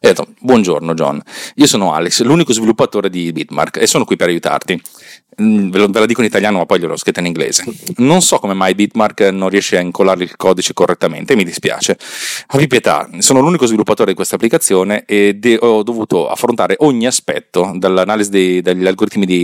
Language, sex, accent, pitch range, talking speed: Italian, male, native, 90-110 Hz, 190 wpm